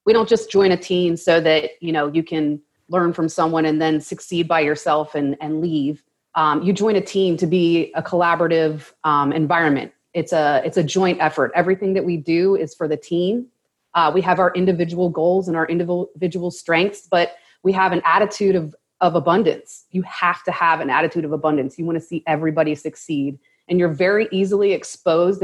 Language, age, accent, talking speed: English, 30-49, American, 200 wpm